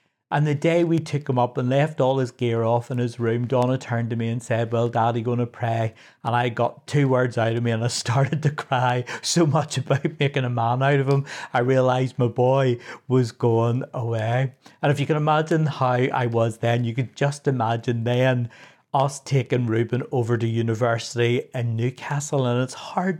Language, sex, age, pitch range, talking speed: English, male, 60-79, 115-135 Hz, 210 wpm